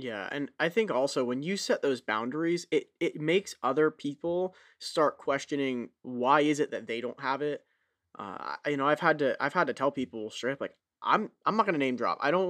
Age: 20-39